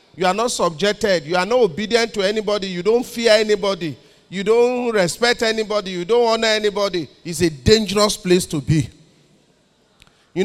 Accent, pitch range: Nigerian, 195-240 Hz